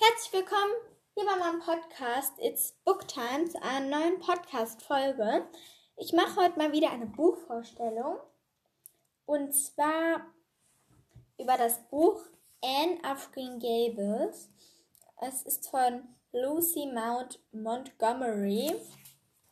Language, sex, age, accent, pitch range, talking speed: German, female, 10-29, German, 245-320 Hz, 105 wpm